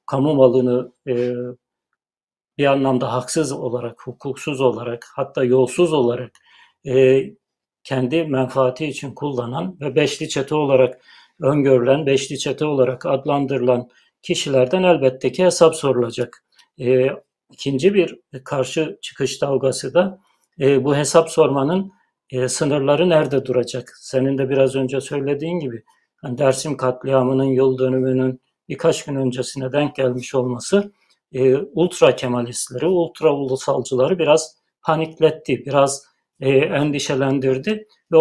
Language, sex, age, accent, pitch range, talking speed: Turkish, male, 60-79, native, 130-155 Hz, 105 wpm